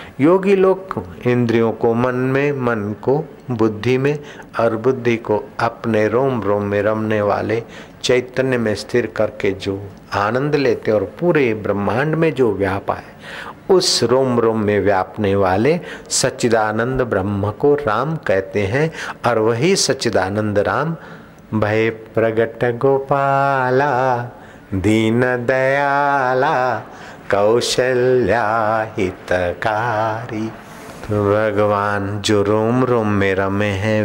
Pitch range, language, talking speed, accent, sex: 105-125 Hz, Hindi, 105 wpm, native, male